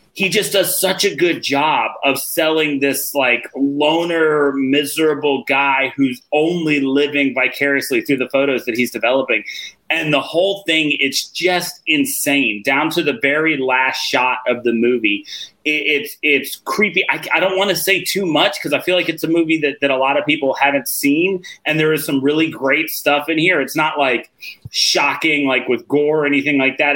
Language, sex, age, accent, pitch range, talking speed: English, male, 30-49, American, 140-180 Hz, 190 wpm